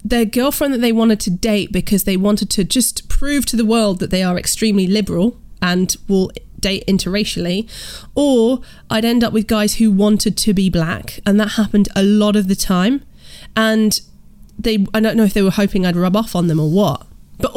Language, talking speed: English, 210 wpm